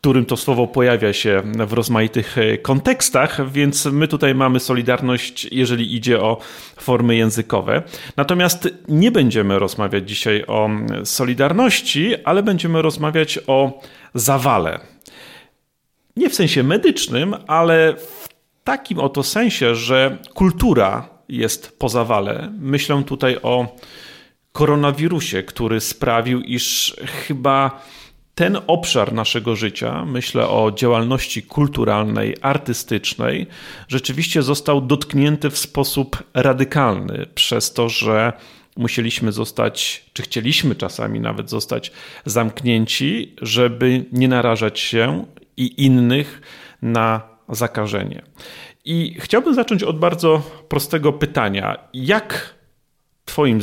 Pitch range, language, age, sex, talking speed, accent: 115-150 Hz, Polish, 40-59, male, 105 wpm, native